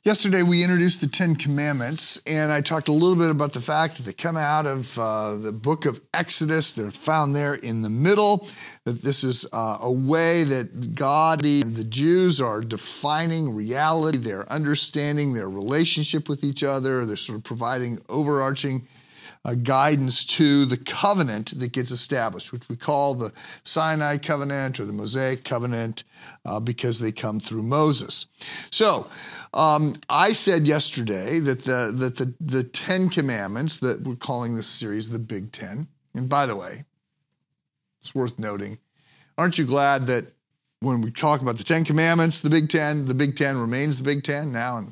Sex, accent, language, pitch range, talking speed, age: male, American, English, 120-155 Hz, 175 wpm, 50-69